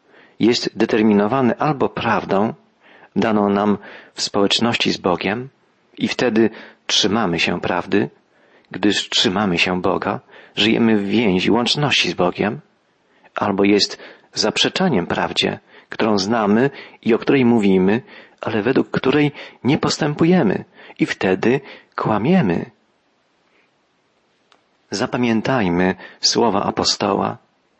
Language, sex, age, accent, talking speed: Polish, male, 40-59, native, 100 wpm